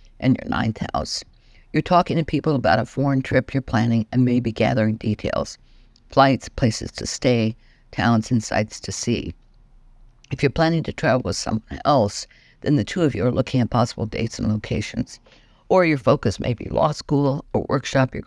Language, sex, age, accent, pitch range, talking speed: English, female, 60-79, American, 110-135 Hz, 185 wpm